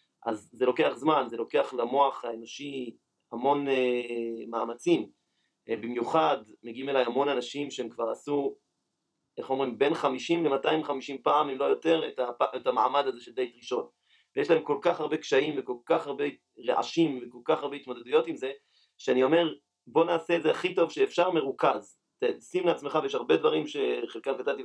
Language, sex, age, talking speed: Hebrew, male, 30-49, 170 wpm